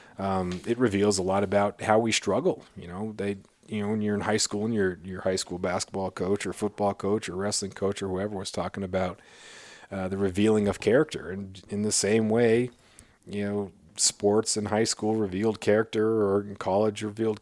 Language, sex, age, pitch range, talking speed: English, male, 40-59, 95-110 Hz, 205 wpm